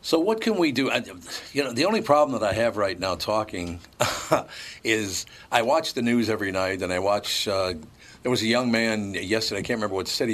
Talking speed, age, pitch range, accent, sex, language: 220 wpm, 50-69, 95-115 Hz, American, male, English